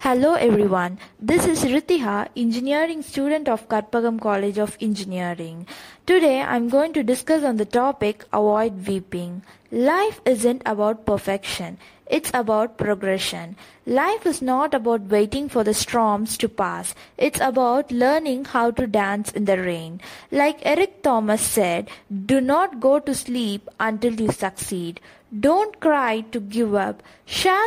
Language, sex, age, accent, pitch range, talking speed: English, female, 20-39, Indian, 215-280 Hz, 145 wpm